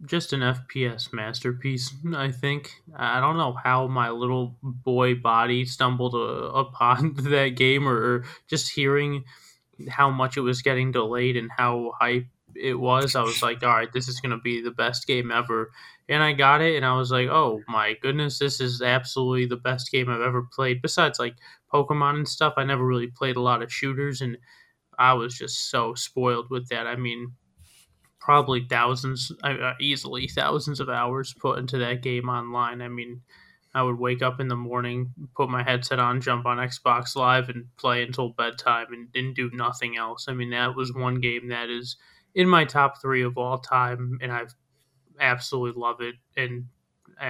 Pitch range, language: 120-135 Hz, English